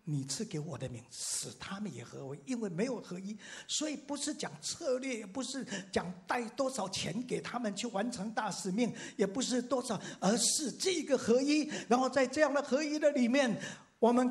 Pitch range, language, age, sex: 150-225 Hz, Chinese, 50-69, male